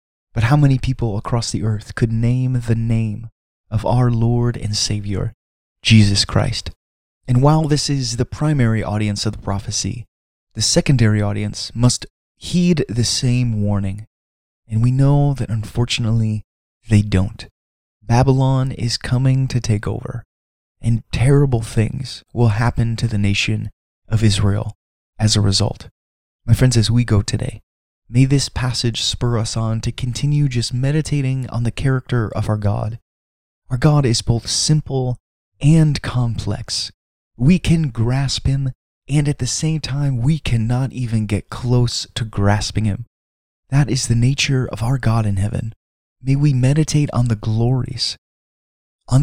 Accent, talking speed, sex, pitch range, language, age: American, 150 wpm, male, 100-125 Hz, English, 20-39